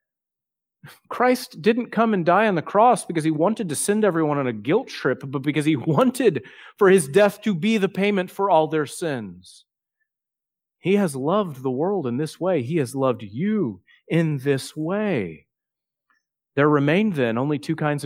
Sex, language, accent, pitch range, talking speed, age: male, English, American, 125-185 Hz, 180 wpm, 40-59